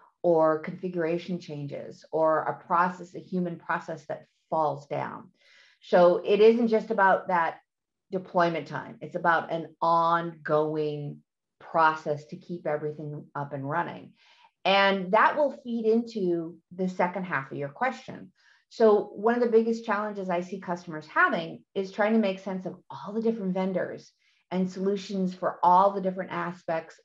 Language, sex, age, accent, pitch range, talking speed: English, female, 50-69, American, 165-215 Hz, 155 wpm